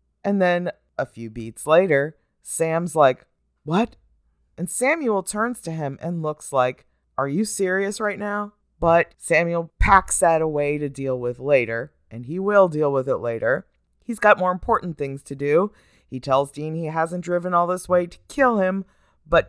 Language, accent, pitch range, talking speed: English, American, 135-185 Hz, 180 wpm